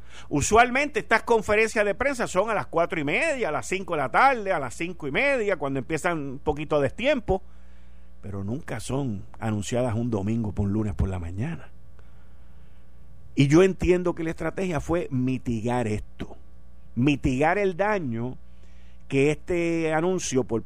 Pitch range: 95-155 Hz